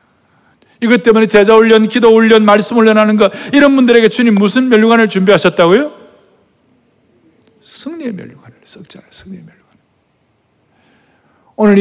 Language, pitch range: Korean, 155-225 Hz